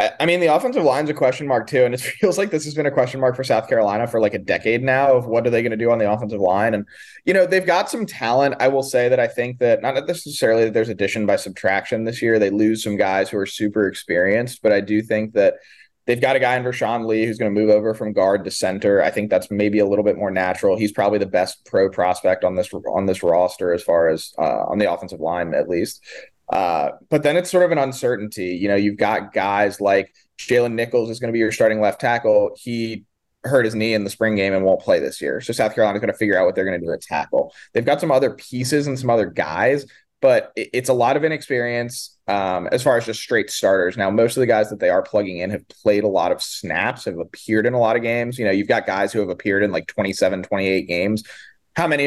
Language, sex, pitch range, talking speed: English, male, 105-130 Hz, 265 wpm